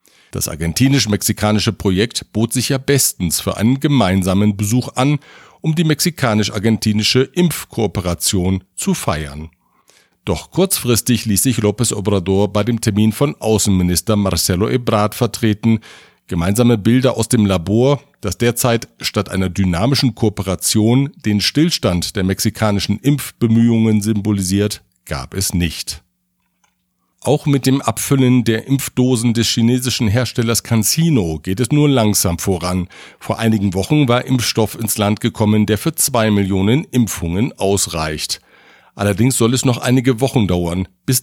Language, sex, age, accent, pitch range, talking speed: German, male, 50-69, German, 95-125 Hz, 130 wpm